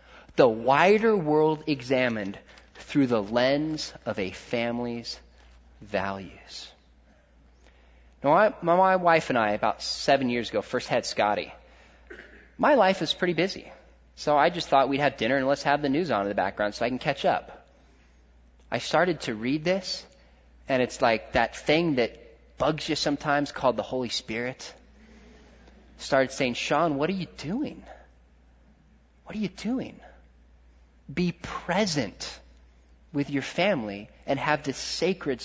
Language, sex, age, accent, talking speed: English, male, 30-49, American, 150 wpm